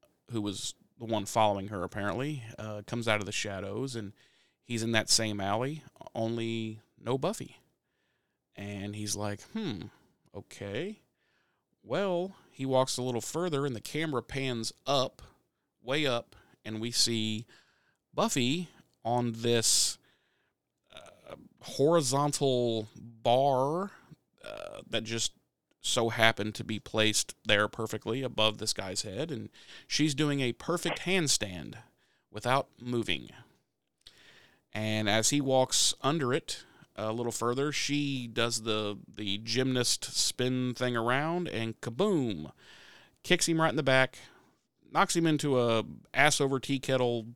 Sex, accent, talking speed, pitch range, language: male, American, 130 wpm, 110-135 Hz, English